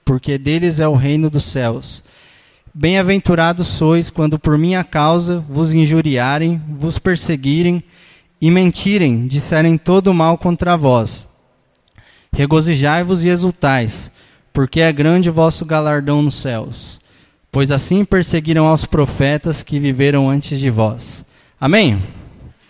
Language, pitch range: Portuguese, 145-195 Hz